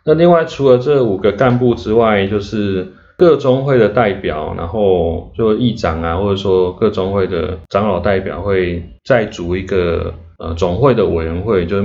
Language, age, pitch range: Chinese, 20-39, 90-120 Hz